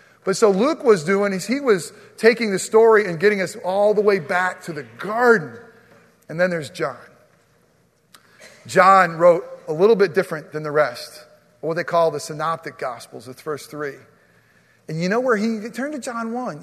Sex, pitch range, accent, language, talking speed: male, 190-255 Hz, American, English, 185 wpm